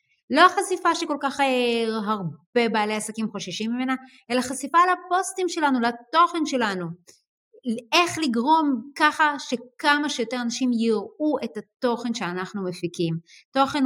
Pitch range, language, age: 225-290 Hz, Hebrew, 30-49